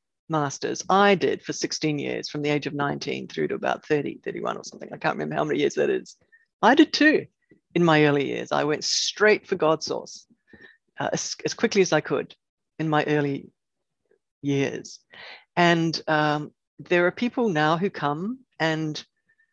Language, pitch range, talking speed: English, 155-210 Hz, 180 wpm